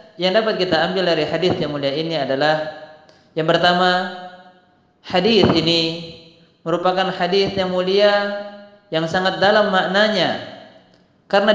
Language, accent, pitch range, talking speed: Indonesian, native, 165-200 Hz, 120 wpm